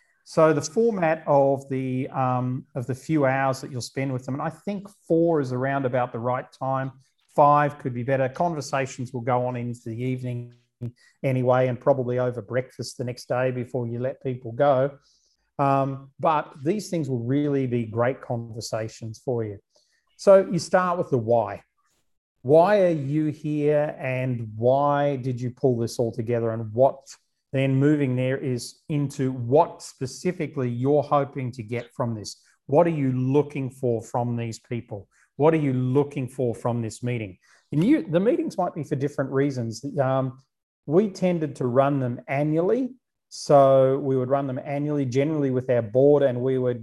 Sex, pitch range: male, 125-145 Hz